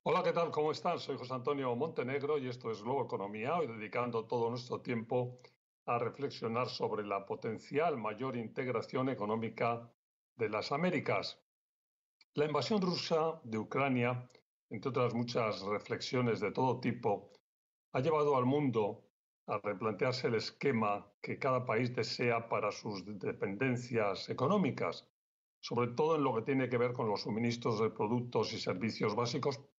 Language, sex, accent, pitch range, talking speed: Spanish, male, Spanish, 115-140 Hz, 150 wpm